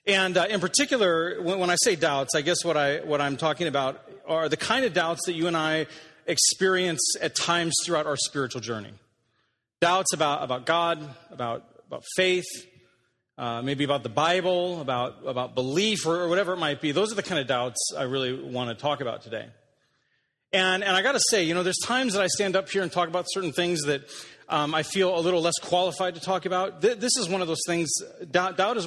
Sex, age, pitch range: male, 30-49, 140-185 Hz